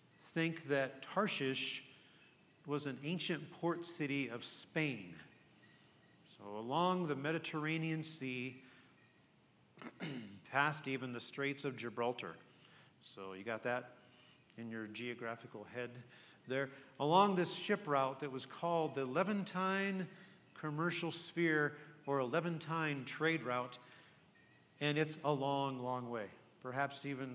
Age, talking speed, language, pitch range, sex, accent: 40-59, 115 wpm, English, 130-165 Hz, male, American